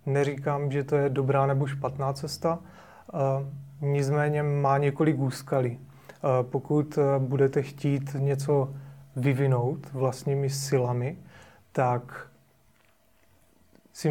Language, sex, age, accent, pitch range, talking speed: Czech, male, 30-49, native, 135-145 Hz, 90 wpm